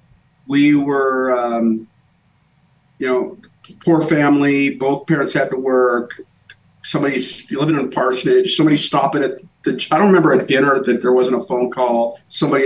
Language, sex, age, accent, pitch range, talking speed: English, male, 50-69, American, 125-150 Hz, 155 wpm